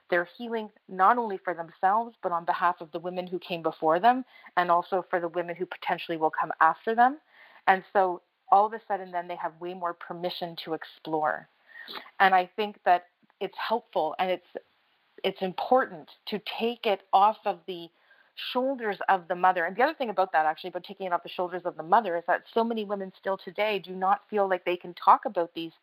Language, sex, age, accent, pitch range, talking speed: English, female, 30-49, American, 175-210 Hz, 215 wpm